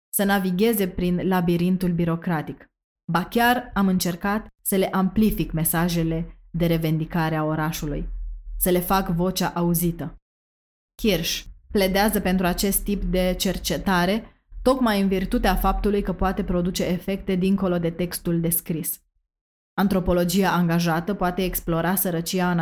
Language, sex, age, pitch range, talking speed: Romanian, female, 20-39, 170-195 Hz, 125 wpm